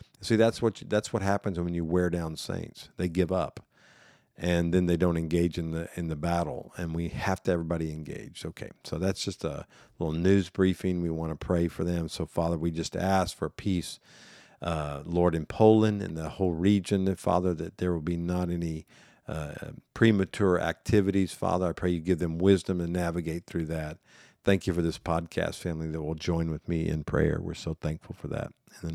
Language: English